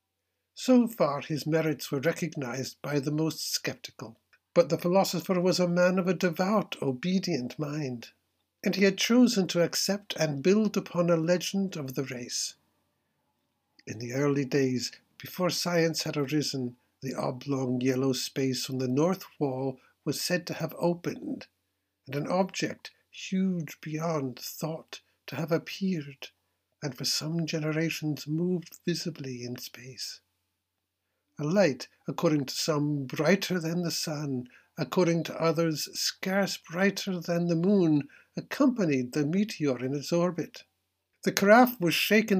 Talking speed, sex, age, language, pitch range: 140 wpm, male, 60-79, English, 135-175 Hz